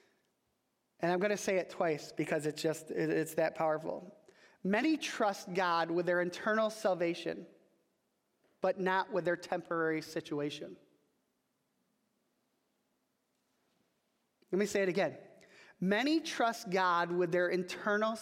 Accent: American